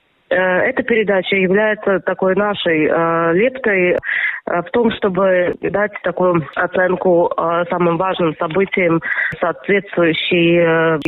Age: 20-39